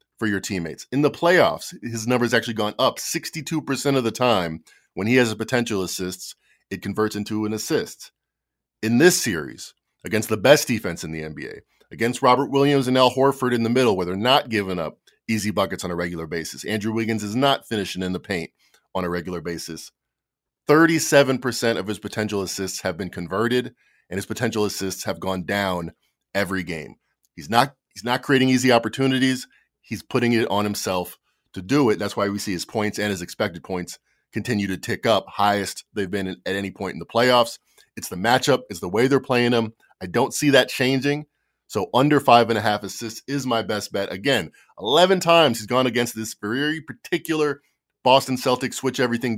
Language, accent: English, American